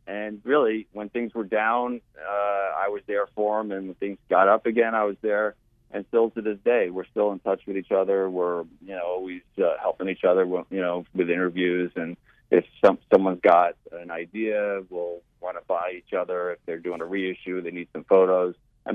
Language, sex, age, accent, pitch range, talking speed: English, male, 40-59, American, 90-110 Hz, 220 wpm